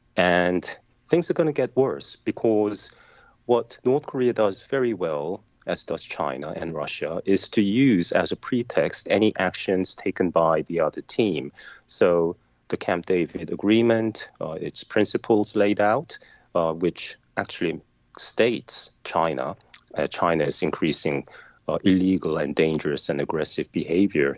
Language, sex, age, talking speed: English, male, 30-49, 145 wpm